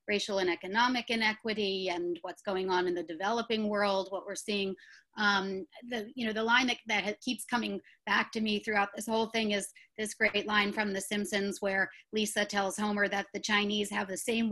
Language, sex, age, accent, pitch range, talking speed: English, female, 30-49, American, 215-295 Hz, 205 wpm